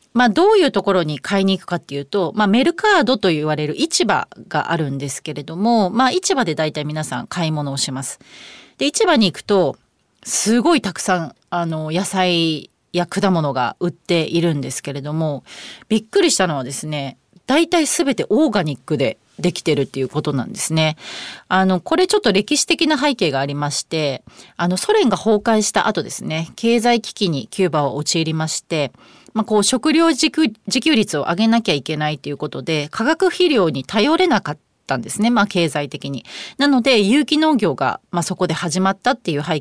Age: 30-49